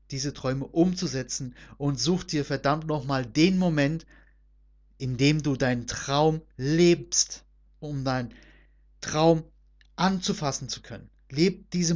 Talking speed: 120 wpm